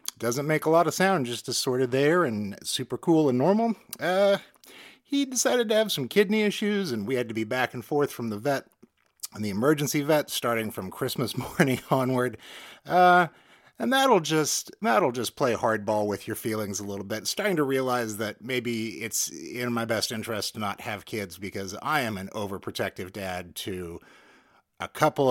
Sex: male